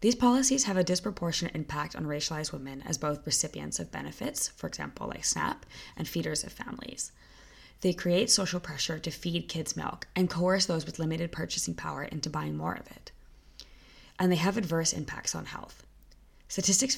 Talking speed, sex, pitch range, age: 175 wpm, female, 145-180 Hz, 20-39